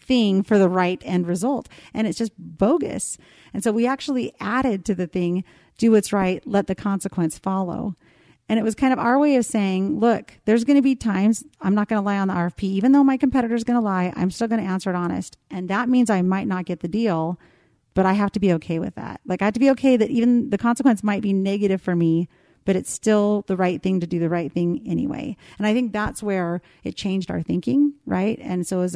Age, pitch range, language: 30-49, 185-235 Hz, English